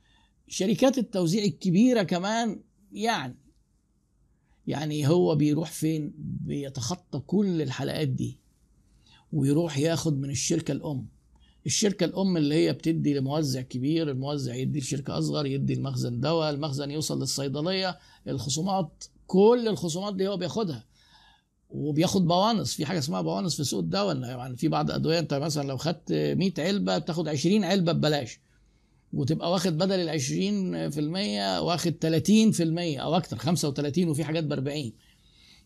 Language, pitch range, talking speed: Arabic, 145-180 Hz, 135 wpm